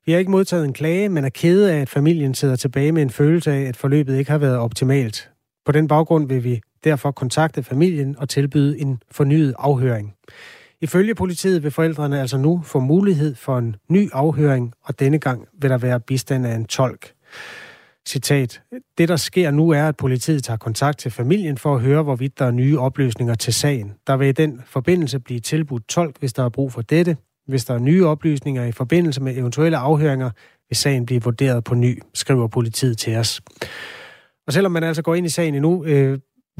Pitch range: 125-155 Hz